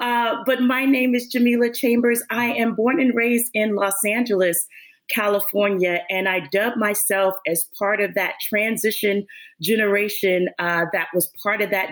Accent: American